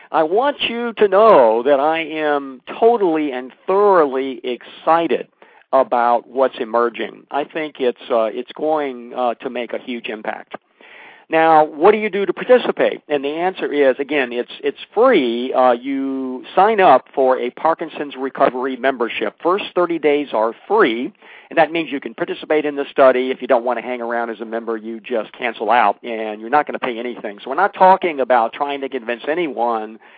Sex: male